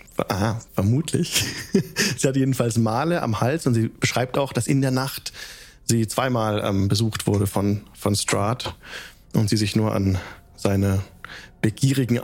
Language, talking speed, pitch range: German, 150 wpm, 100-125 Hz